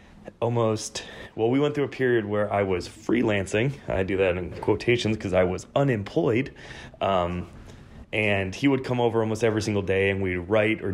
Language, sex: English, male